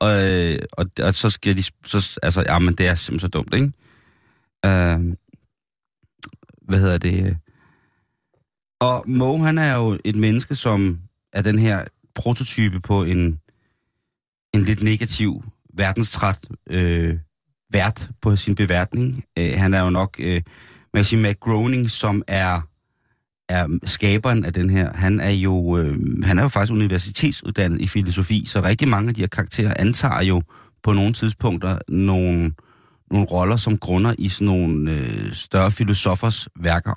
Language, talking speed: Danish, 150 wpm